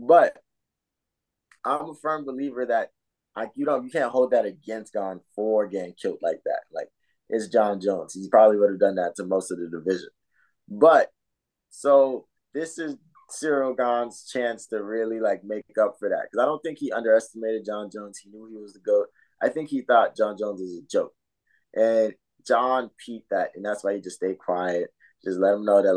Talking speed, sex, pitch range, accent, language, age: 205 wpm, male, 100-130 Hz, American, English, 20-39